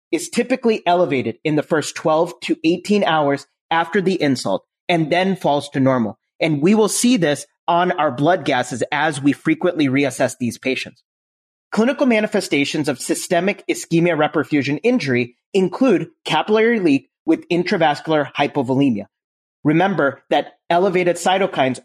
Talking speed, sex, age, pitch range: 135 wpm, male, 30-49, 140-190 Hz